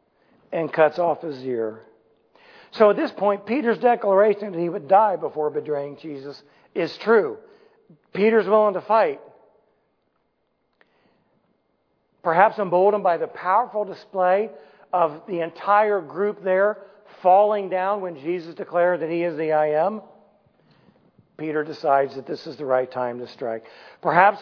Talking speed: 140 wpm